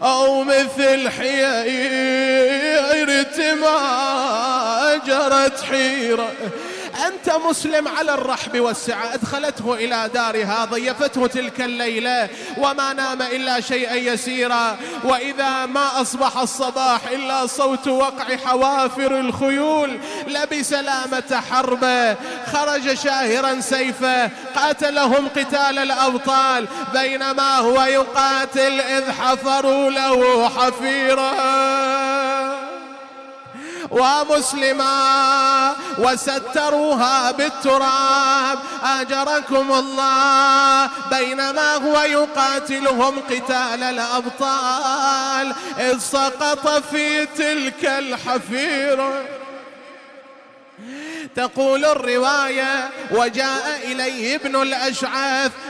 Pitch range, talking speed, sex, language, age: 260-280 Hz, 75 wpm, male, Arabic, 20-39